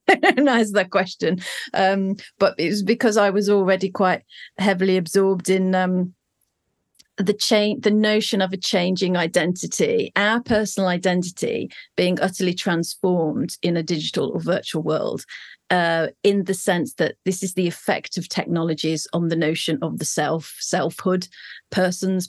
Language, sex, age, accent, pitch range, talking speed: English, female, 40-59, British, 175-200 Hz, 150 wpm